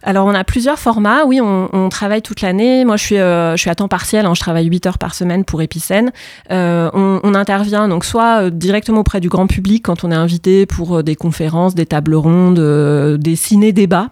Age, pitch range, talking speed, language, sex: 30-49, 165-195 Hz, 225 wpm, French, female